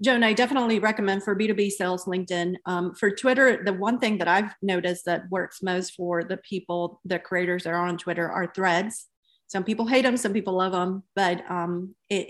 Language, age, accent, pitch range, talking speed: English, 30-49, American, 180-210 Hz, 205 wpm